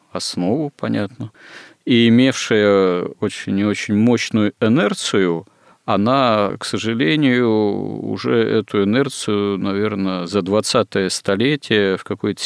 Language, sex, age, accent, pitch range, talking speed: Russian, male, 40-59, native, 95-115 Hz, 100 wpm